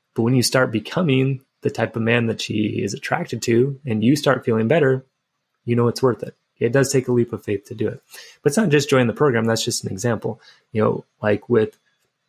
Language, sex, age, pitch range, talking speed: English, male, 20-39, 115-140 Hz, 240 wpm